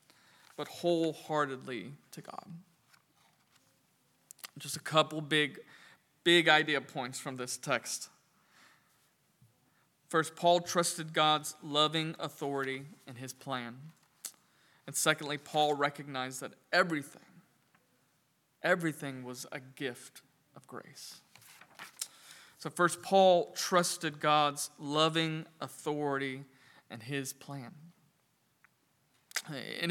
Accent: American